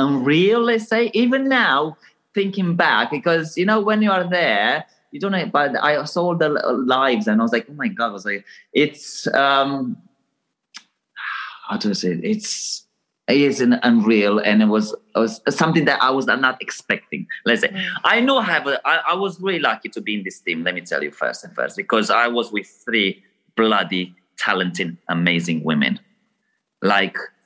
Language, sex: English, male